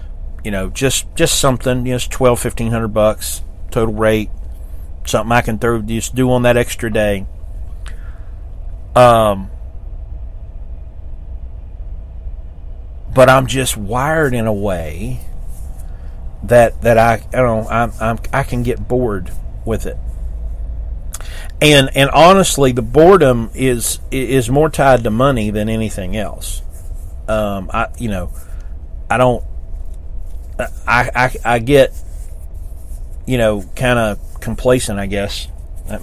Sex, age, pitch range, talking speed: male, 40-59, 80-120 Hz, 125 wpm